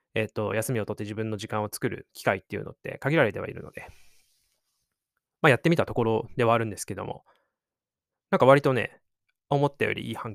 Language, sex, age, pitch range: Japanese, male, 20-39, 105-145 Hz